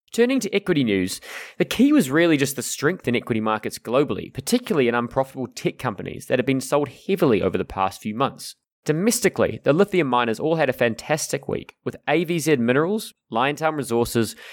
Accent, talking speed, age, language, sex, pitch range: Australian, 180 wpm, 20-39, English, male, 120-170 Hz